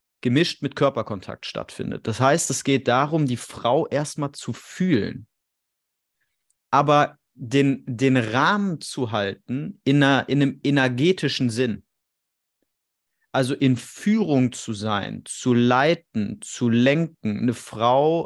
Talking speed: 120 wpm